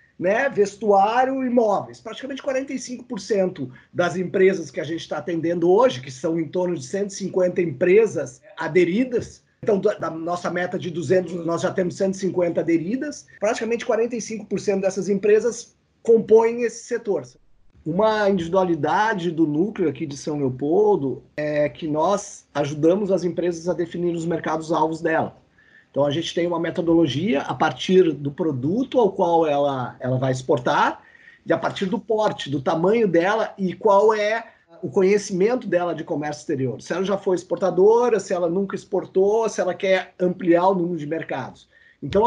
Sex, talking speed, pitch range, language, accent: male, 155 wpm, 170-215 Hz, Portuguese, Brazilian